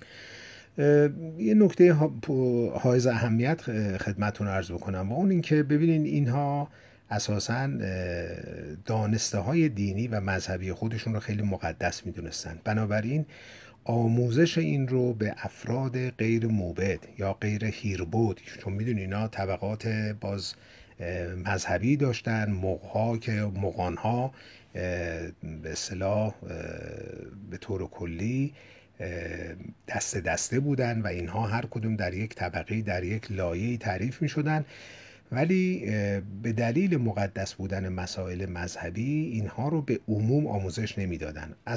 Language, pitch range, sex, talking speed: Persian, 95-125 Hz, male, 115 wpm